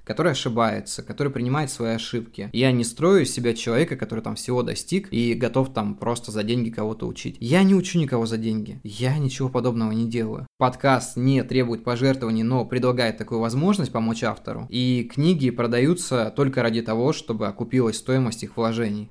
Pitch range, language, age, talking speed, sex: 110-130 Hz, Russian, 20-39, 175 wpm, male